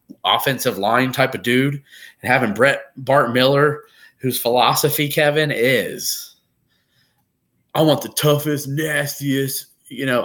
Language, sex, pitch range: English, male, 110-140 Hz